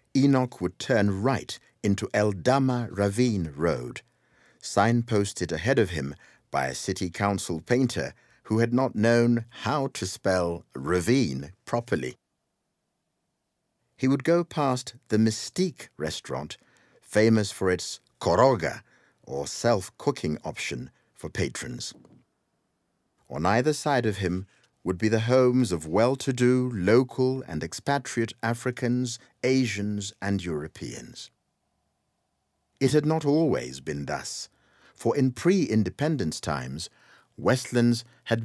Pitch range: 95-130 Hz